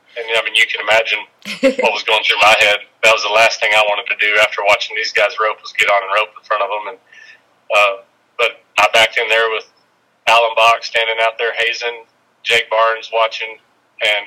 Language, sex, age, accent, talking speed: English, male, 30-49, American, 225 wpm